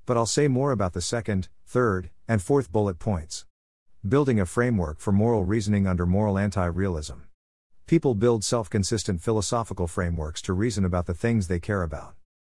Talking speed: 165 wpm